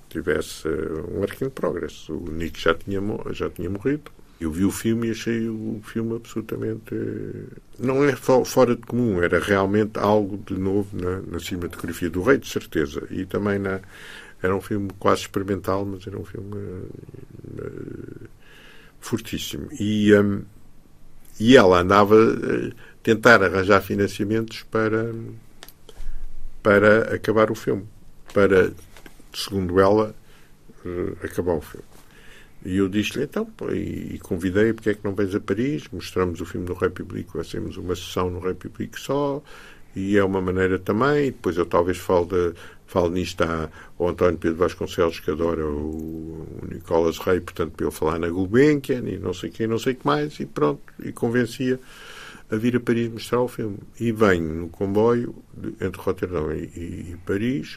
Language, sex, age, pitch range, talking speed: Portuguese, male, 50-69, 90-115 Hz, 155 wpm